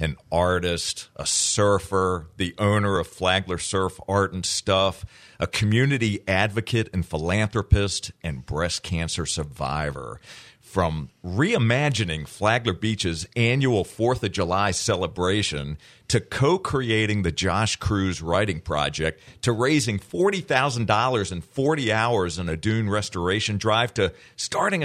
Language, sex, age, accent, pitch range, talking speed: English, male, 50-69, American, 85-115 Hz, 120 wpm